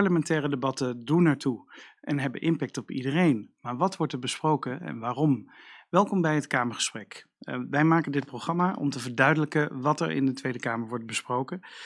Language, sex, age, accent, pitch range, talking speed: Dutch, male, 40-59, Dutch, 130-160 Hz, 180 wpm